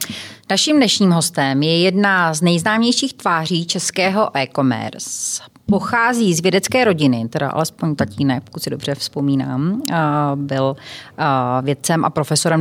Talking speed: 120 wpm